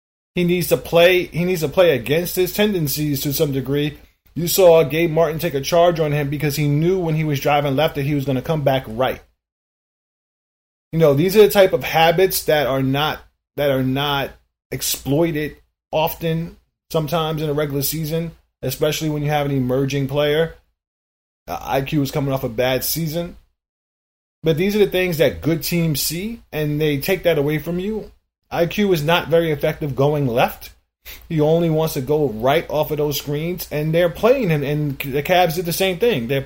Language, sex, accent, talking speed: English, male, American, 195 wpm